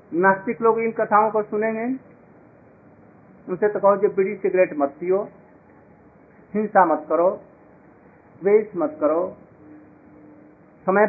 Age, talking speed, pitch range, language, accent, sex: 50-69, 110 wpm, 180-215 Hz, Hindi, native, male